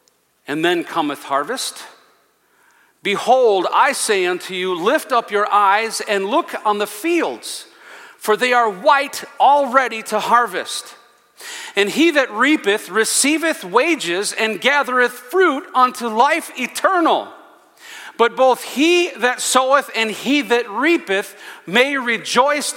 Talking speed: 125 wpm